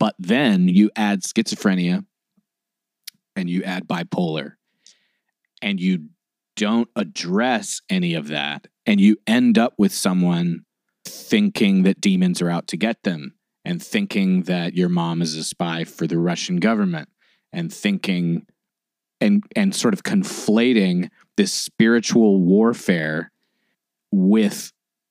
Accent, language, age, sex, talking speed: American, English, 30-49, male, 125 wpm